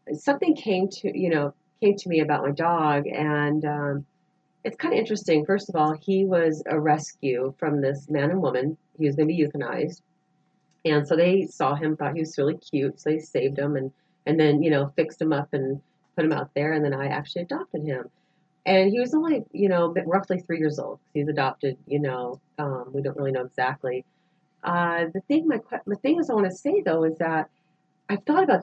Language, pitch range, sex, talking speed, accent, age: English, 150-190 Hz, female, 220 wpm, American, 40-59